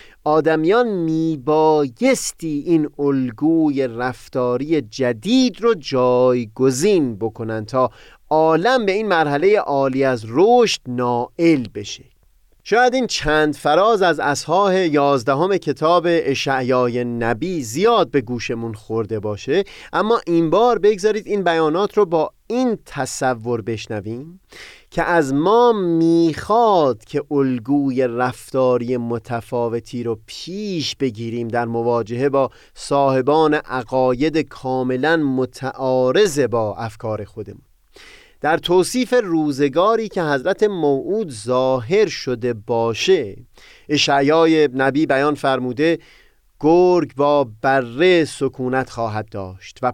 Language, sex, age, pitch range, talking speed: Persian, male, 30-49, 125-165 Hz, 105 wpm